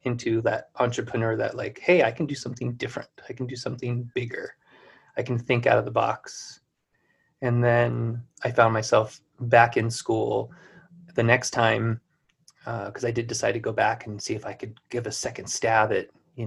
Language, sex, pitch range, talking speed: English, male, 110-130 Hz, 195 wpm